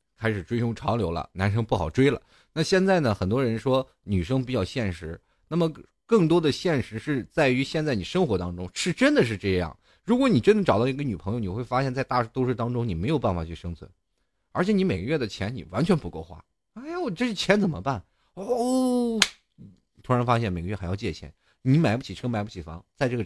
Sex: male